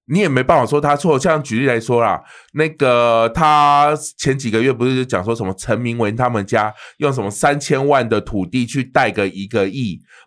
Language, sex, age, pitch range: Chinese, male, 20-39, 115-150 Hz